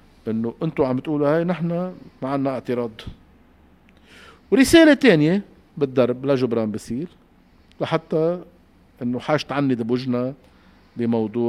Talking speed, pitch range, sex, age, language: 100 wpm, 115-155 Hz, male, 50-69, Arabic